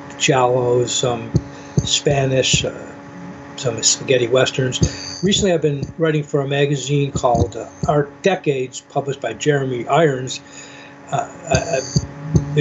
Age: 60-79